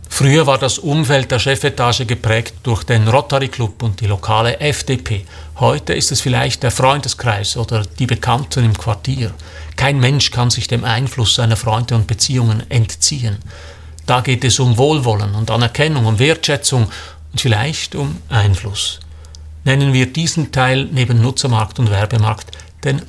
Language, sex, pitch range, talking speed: German, male, 110-135 Hz, 155 wpm